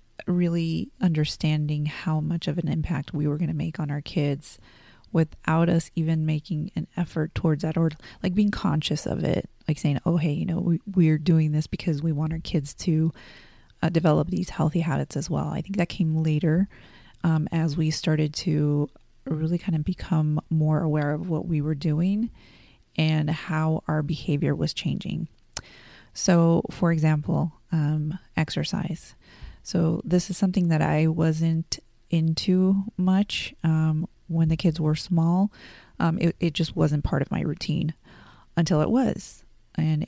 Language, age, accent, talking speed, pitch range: English, 30-49, American, 165 wpm, 155-170 Hz